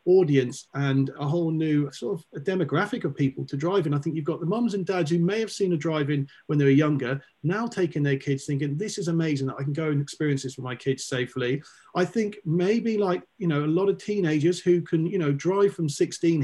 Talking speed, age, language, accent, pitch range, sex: 250 wpm, 40-59, English, British, 140-180 Hz, male